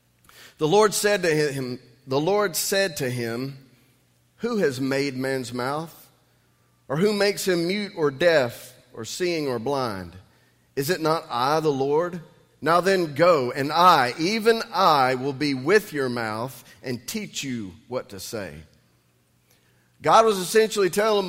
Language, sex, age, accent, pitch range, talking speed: English, male, 40-59, American, 125-185 Hz, 150 wpm